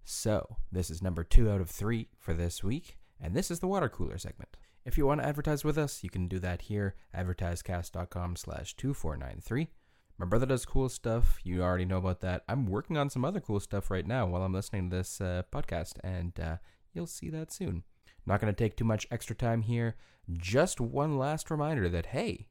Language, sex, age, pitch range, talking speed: English, male, 20-39, 90-120 Hz, 215 wpm